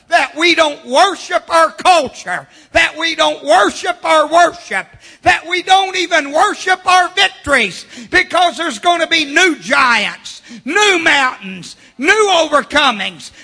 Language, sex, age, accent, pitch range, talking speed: English, male, 50-69, American, 310-365 Hz, 135 wpm